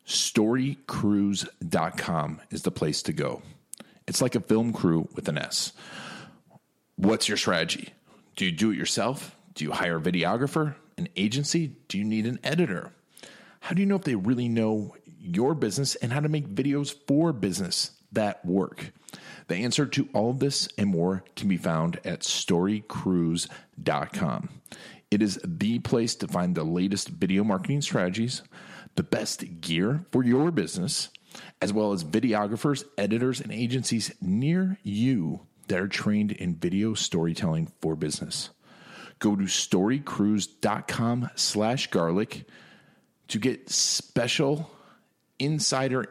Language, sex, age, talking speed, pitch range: English, male, 40-59, 140 wpm, 100-145 Hz